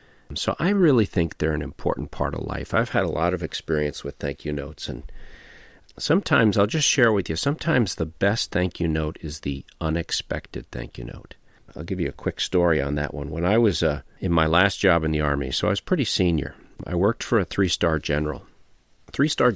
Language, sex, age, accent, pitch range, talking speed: English, male, 50-69, American, 75-95 Hz, 220 wpm